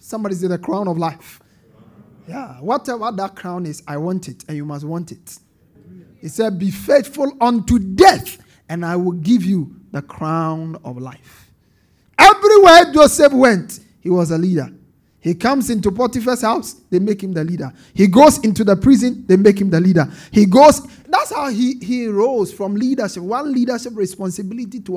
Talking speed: 180 wpm